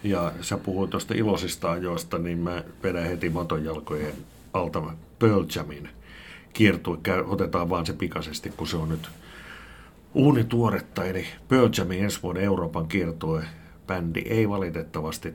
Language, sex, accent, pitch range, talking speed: Finnish, male, native, 80-95 Hz, 135 wpm